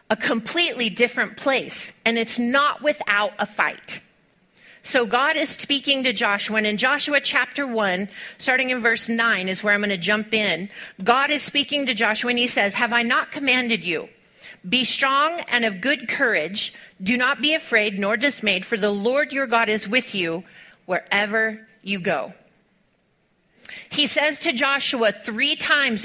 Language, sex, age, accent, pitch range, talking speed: English, female, 30-49, American, 215-280 Hz, 170 wpm